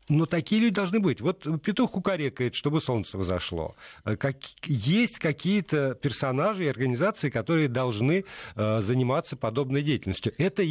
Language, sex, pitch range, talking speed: Russian, male, 105-160 Hz, 125 wpm